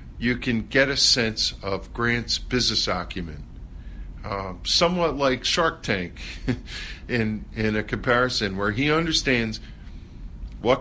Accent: American